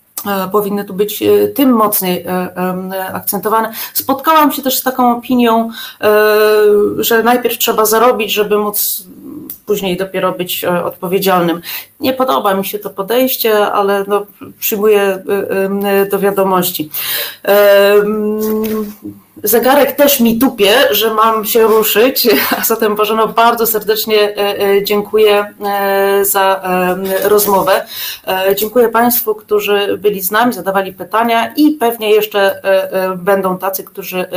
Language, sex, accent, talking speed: Polish, female, native, 105 wpm